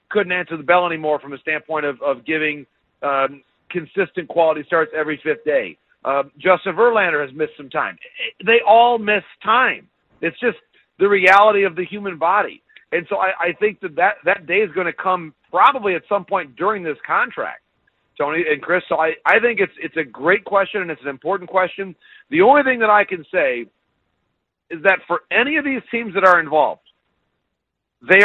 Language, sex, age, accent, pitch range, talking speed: English, male, 50-69, American, 165-210 Hz, 195 wpm